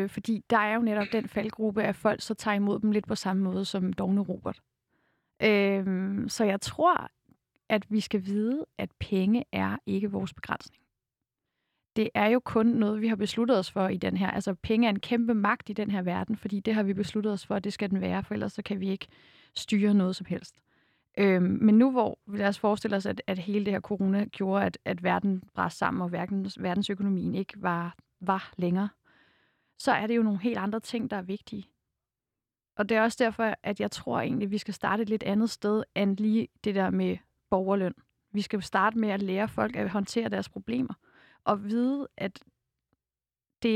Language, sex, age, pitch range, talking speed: Danish, female, 30-49, 195-215 Hz, 215 wpm